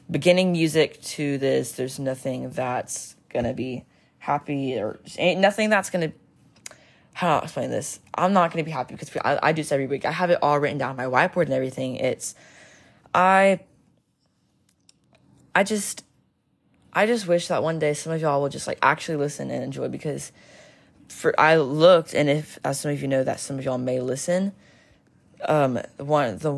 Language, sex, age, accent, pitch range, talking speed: English, female, 20-39, American, 135-175 Hz, 190 wpm